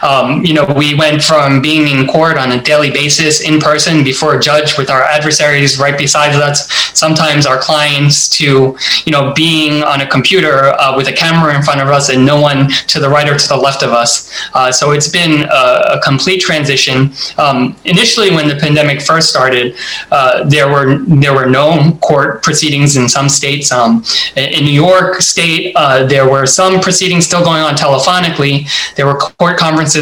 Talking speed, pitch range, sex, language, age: 200 wpm, 140-160 Hz, male, English, 20-39